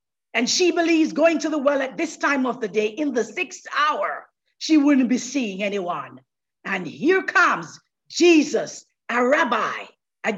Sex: female